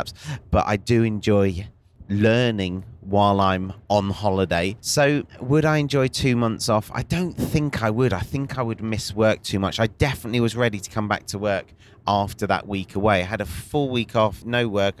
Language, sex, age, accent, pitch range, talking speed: English, male, 30-49, British, 100-115 Hz, 200 wpm